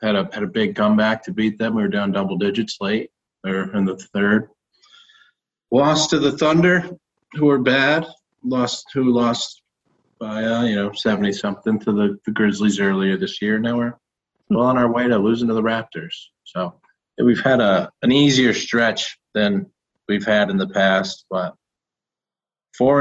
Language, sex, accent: English, male, American